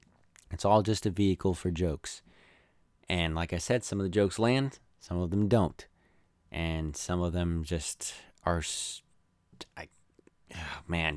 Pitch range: 90-110 Hz